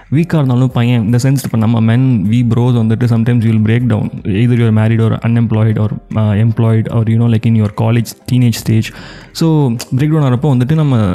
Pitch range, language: 120-140 Hz, Tamil